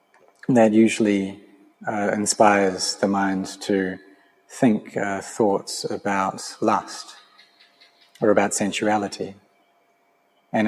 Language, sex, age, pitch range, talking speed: English, male, 30-49, 95-110 Hz, 90 wpm